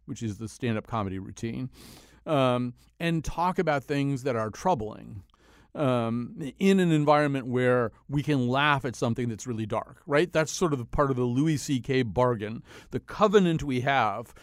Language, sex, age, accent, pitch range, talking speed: English, male, 40-59, American, 115-150 Hz, 170 wpm